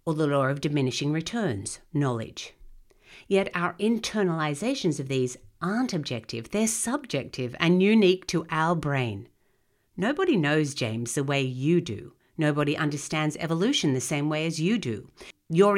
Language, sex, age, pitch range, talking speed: English, female, 50-69, 130-175 Hz, 145 wpm